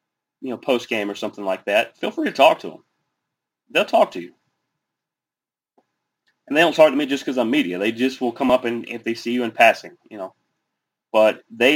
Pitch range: 110-130 Hz